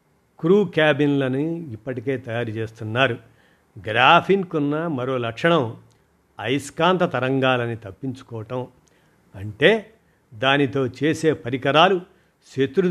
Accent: native